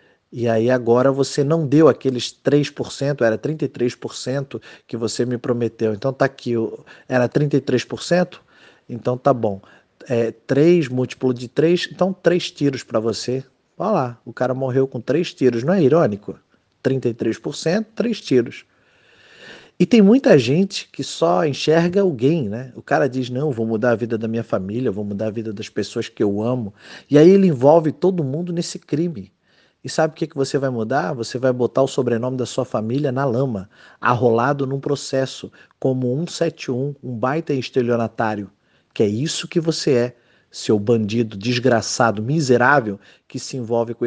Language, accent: Portuguese, Brazilian